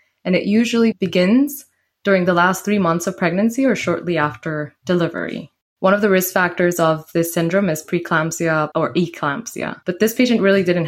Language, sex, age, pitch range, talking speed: English, female, 20-39, 155-190 Hz, 175 wpm